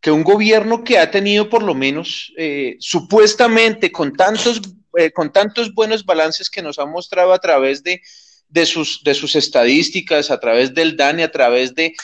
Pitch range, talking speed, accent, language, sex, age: 155-205 Hz, 185 wpm, Colombian, English, male, 30-49